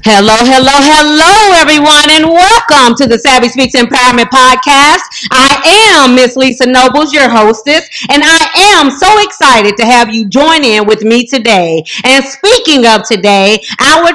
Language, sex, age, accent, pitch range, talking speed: English, female, 40-59, American, 255-335 Hz, 155 wpm